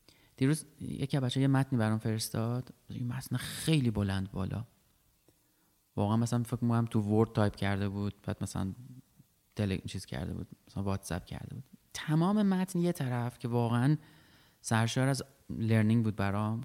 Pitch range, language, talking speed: 105-145 Hz, Persian, 160 wpm